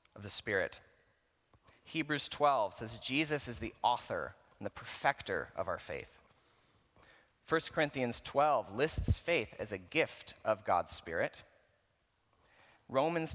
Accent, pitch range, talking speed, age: American, 110-145 Hz, 120 wpm, 30-49